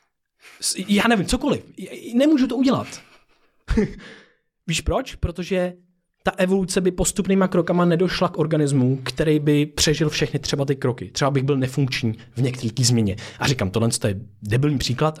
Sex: male